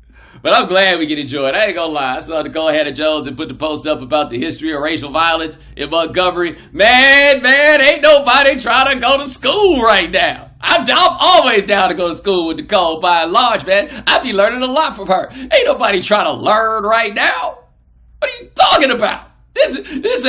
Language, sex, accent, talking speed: English, male, American, 220 wpm